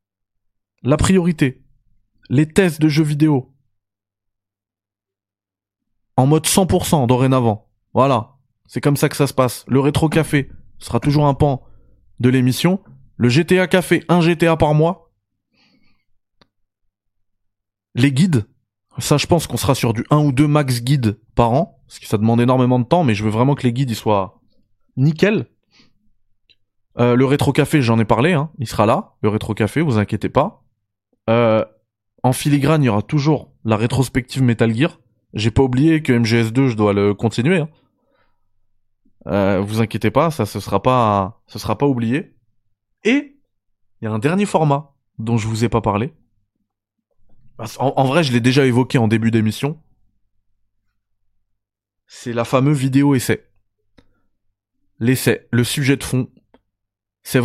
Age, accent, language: 20-39, French, French